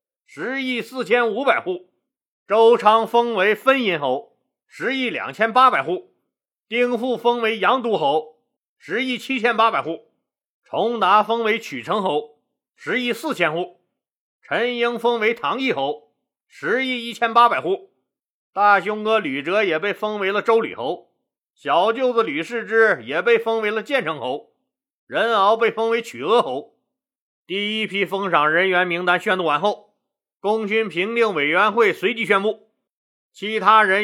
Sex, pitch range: male, 190-235 Hz